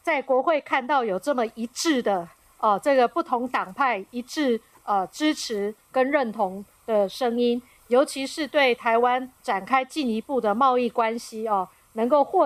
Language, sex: Chinese, female